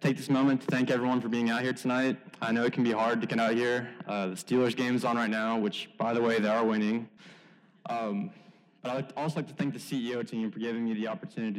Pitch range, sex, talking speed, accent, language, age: 110-135 Hz, male, 265 wpm, American, English, 20-39